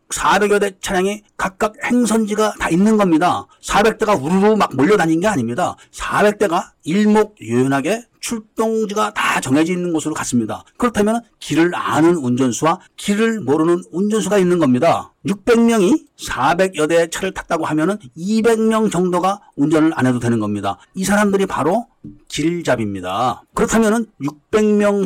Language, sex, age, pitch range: Korean, male, 40-59, 155-215 Hz